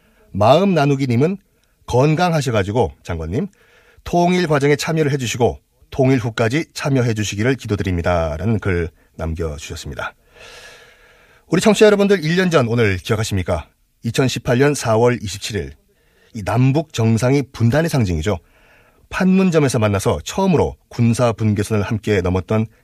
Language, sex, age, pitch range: Korean, male, 30-49, 105-145 Hz